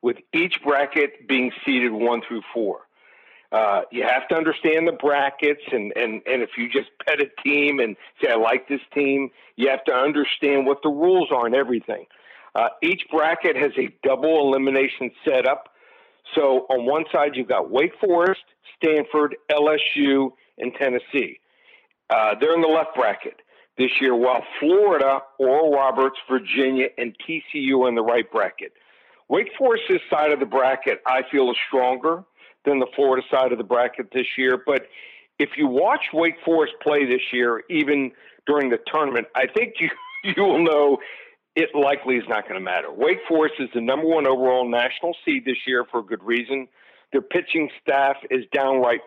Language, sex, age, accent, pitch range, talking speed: English, male, 60-79, American, 130-165 Hz, 175 wpm